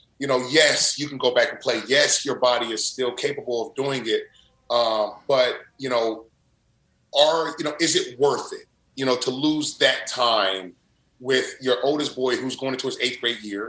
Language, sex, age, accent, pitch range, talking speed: English, male, 30-49, American, 115-140 Hz, 200 wpm